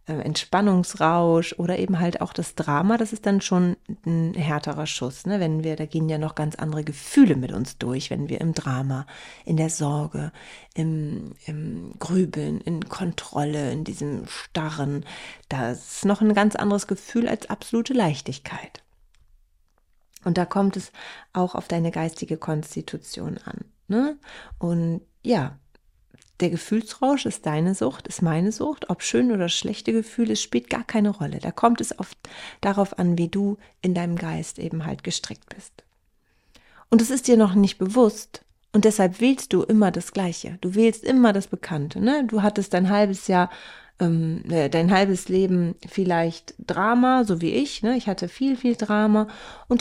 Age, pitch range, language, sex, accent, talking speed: 30-49, 160-215 Hz, German, female, German, 165 wpm